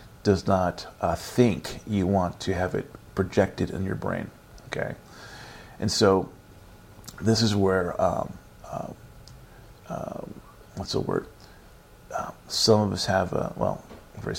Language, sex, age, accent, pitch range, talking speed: English, male, 40-59, American, 90-105 Hz, 140 wpm